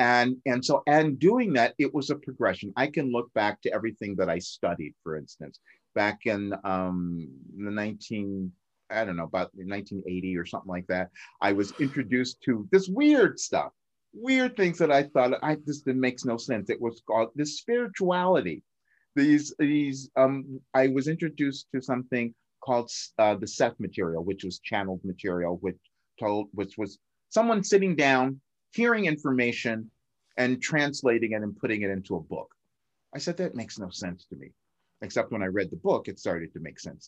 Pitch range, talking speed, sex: 95-140 Hz, 185 wpm, male